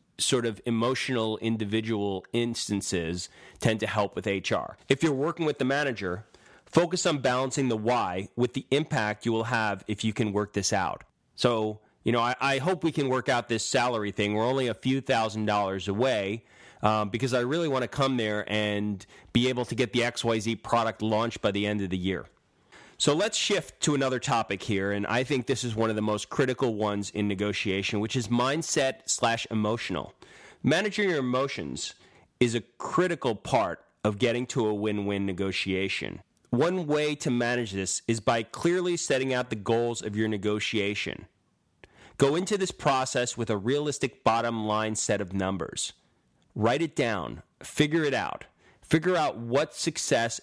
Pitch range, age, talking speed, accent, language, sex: 105-130 Hz, 30-49, 180 wpm, American, English, male